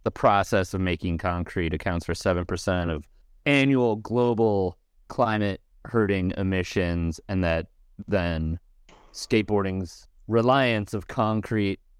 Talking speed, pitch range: 105 wpm, 85-115 Hz